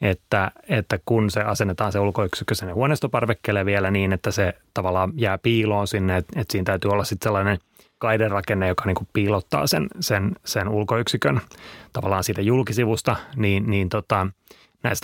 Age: 30-49